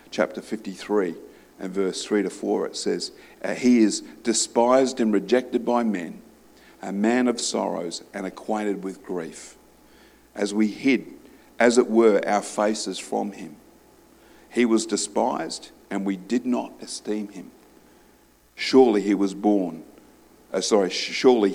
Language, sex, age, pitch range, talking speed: English, male, 50-69, 100-120 Hz, 140 wpm